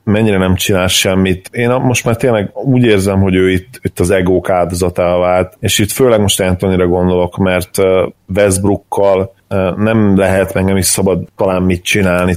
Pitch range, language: 90-100 Hz, Hungarian